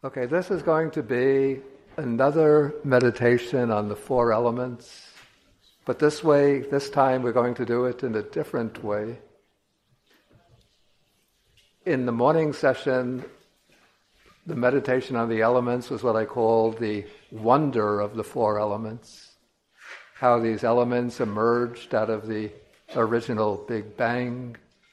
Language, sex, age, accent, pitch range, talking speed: English, male, 60-79, American, 110-125 Hz, 130 wpm